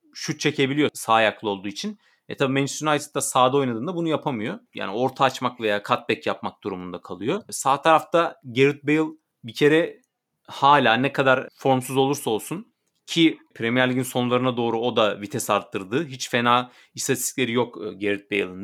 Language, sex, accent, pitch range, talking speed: Turkish, male, native, 120-155 Hz, 160 wpm